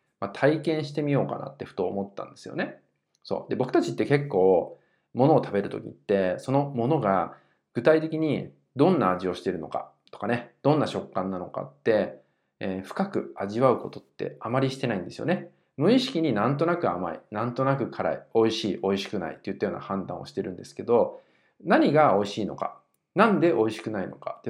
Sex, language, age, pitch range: male, Japanese, 20-39, 100-160 Hz